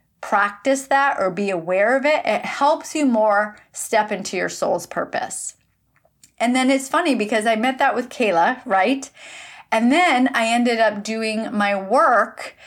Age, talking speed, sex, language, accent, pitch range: 30-49, 165 wpm, female, English, American, 190-250 Hz